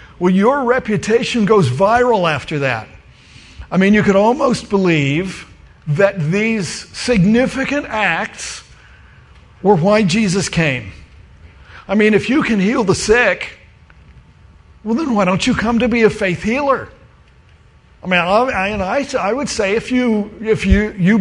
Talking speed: 140 wpm